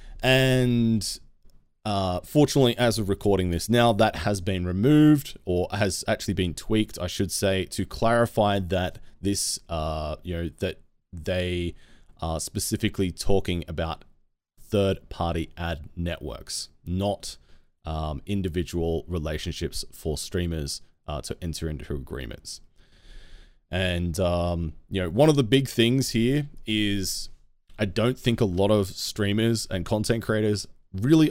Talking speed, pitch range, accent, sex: 135 wpm, 80-105 Hz, Australian, male